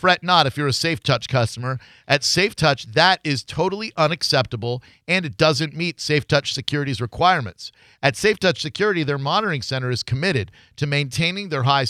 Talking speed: 160 wpm